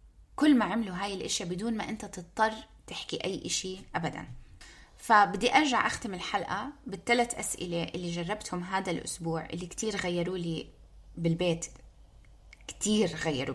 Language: Arabic